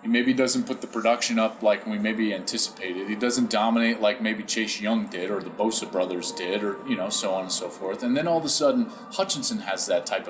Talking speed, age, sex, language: 245 wpm, 30-49, male, English